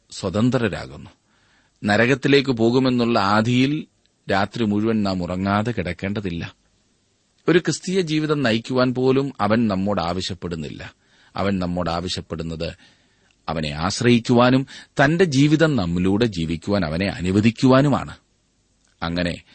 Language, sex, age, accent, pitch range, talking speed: Malayalam, male, 30-49, native, 95-130 Hz, 85 wpm